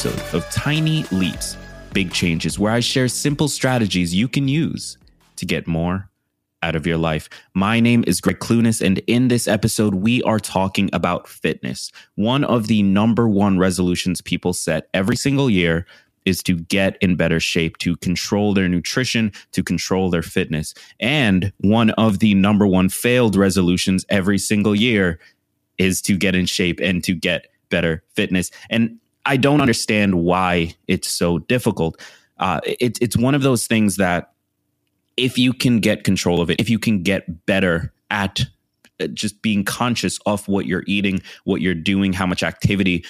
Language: English